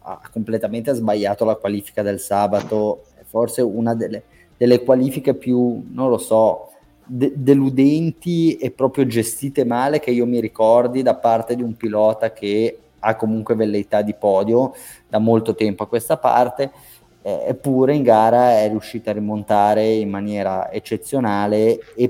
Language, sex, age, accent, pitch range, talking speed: Italian, male, 20-39, native, 100-120 Hz, 150 wpm